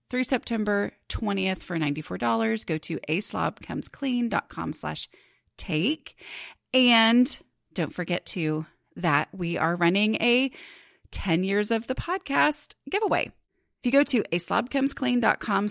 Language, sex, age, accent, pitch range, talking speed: English, female, 30-49, American, 170-245 Hz, 110 wpm